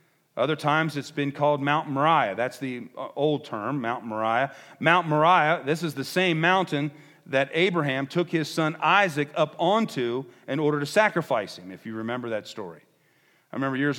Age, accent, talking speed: 40-59, American, 175 wpm